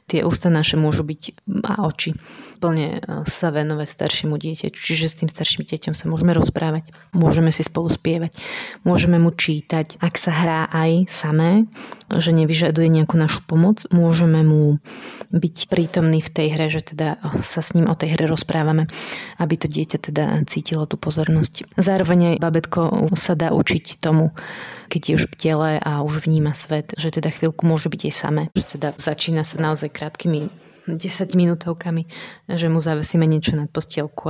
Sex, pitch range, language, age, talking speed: female, 155-170 Hz, Slovak, 30-49, 170 wpm